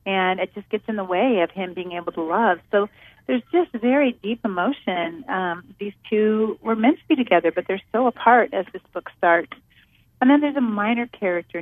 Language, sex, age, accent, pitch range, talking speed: English, female, 40-59, American, 175-230 Hz, 210 wpm